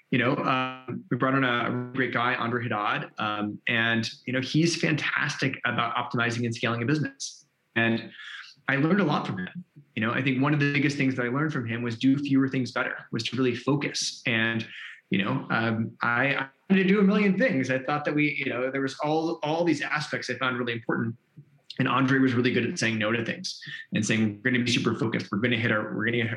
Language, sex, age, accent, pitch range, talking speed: English, male, 20-39, American, 120-150 Hz, 245 wpm